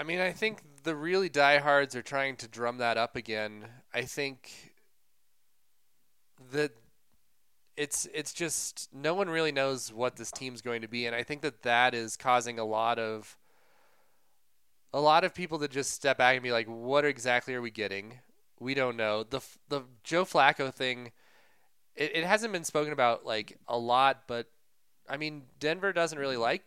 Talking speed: 180 wpm